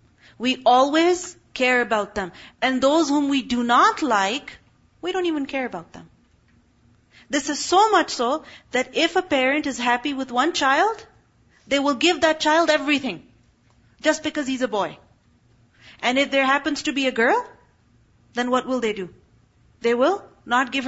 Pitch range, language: 240-315 Hz, English